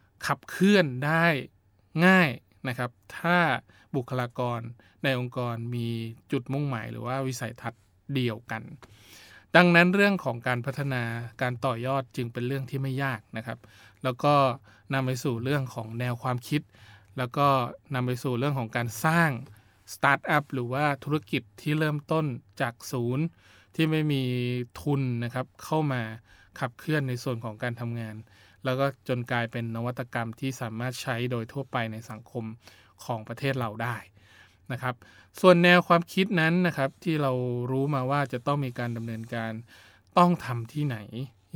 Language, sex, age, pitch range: Thai, male, 20-39, 115-140 Hz